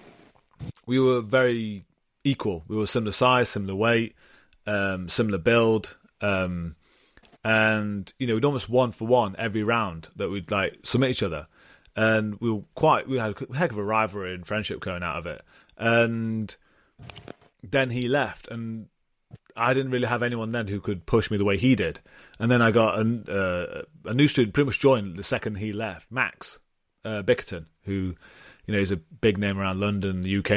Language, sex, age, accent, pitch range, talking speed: English, male, 30-49, British, 100-120 Hz, 190 wpm